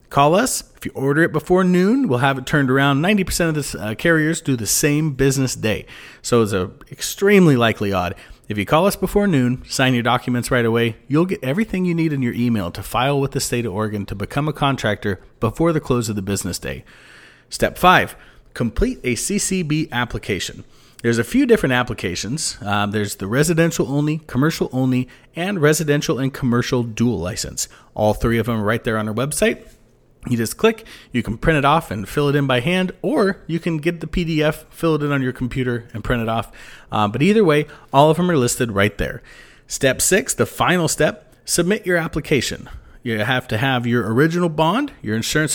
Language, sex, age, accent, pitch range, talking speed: English, male, 30-49, American, 115-165 Hz, 210 wpm